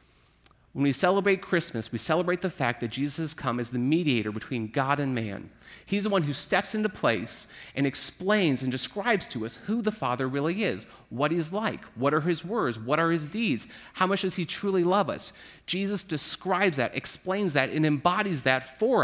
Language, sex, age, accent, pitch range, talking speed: English, male, 30-49, American, 130-190 Hz, 200 wpm